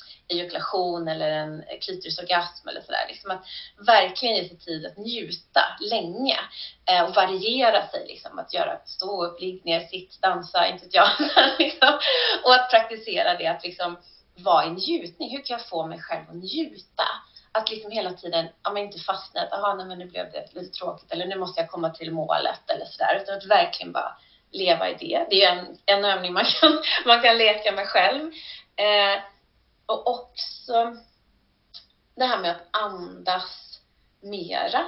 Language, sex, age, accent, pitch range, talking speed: Swedish, female, 30-49, native, 175-230 Hz, 170 wpm